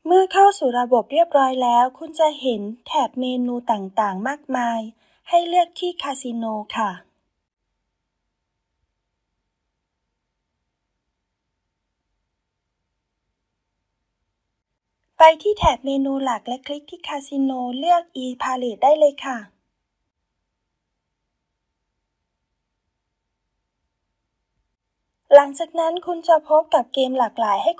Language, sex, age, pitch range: Thai, female, 20-39, 205-300 Hz